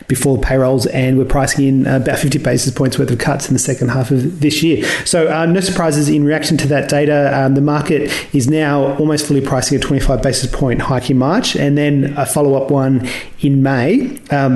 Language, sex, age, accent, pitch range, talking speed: English, male, 30-49, Australian, 130-155 Hz, 215 wpm